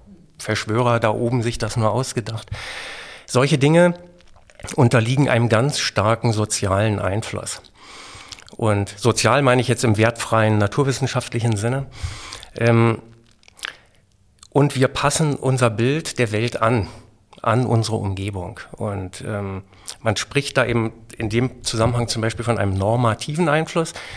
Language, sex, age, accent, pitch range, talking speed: German, male, 50-69, German, 105-125 Hz, 120 wpm